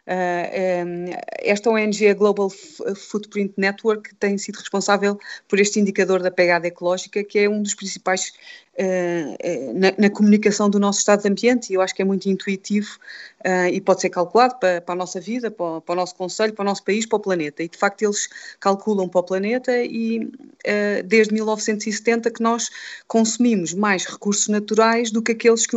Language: Portuguese